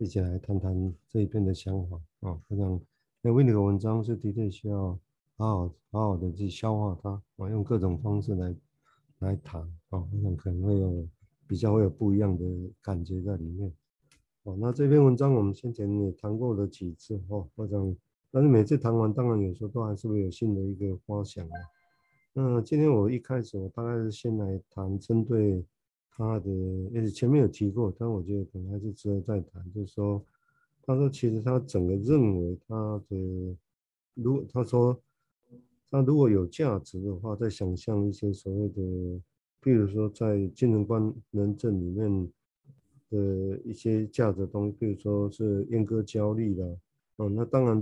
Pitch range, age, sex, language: 95-115 Hz, 50-69, male, Chinese